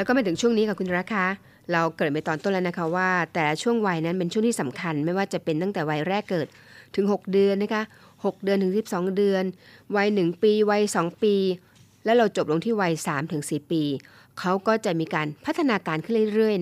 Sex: female